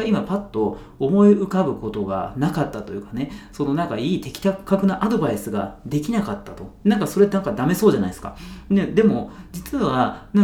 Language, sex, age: Japanese, male, 40-59